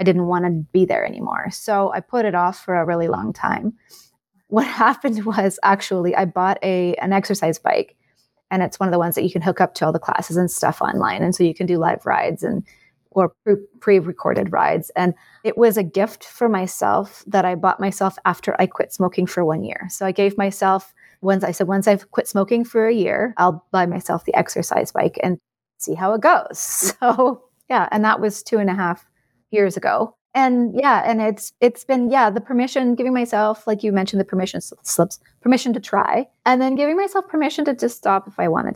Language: English